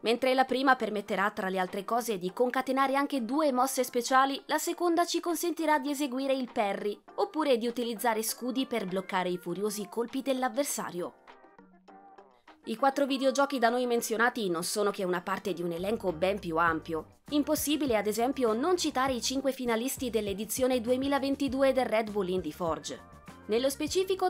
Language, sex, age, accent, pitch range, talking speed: Italian, female, 20-39, native, 220-285 Hz, 165 wpm